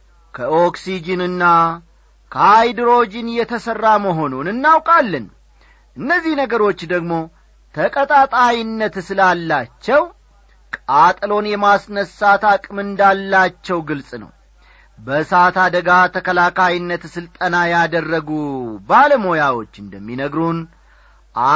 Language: English